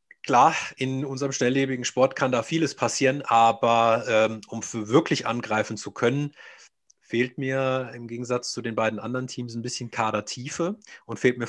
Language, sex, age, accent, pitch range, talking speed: German, male, 30-49, German, 110-140 Hz, 165 wpm